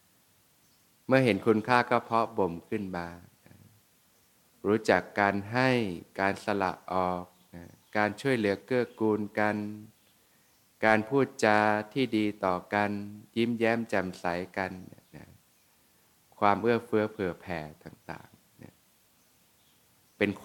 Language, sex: Thai, male